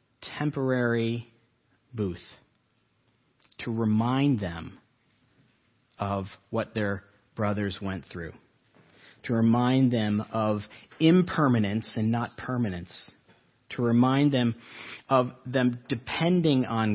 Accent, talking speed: American, 90 wpm